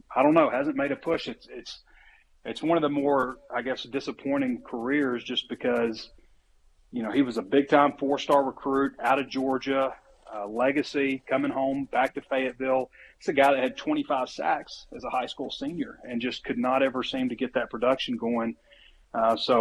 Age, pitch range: 30-49, 115-135 Hz